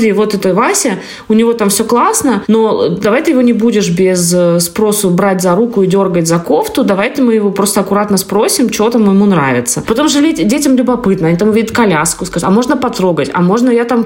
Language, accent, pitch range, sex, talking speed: Russian, native, 190-240 Hz, female, 210 wpm